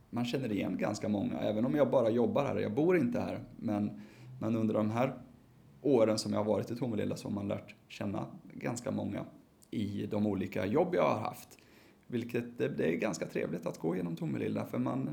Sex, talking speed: male, 200 wpm